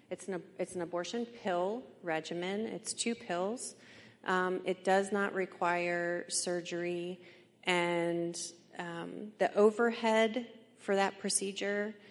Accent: American